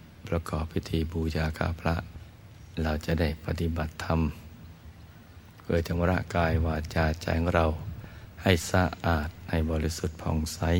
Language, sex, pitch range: Thai, male, 85-95 Hz